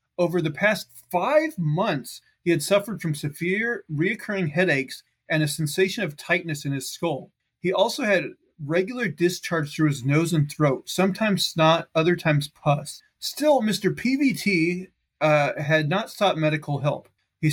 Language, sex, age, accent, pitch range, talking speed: English, male, 30-49, American, 150-185 Hz, 155 wpm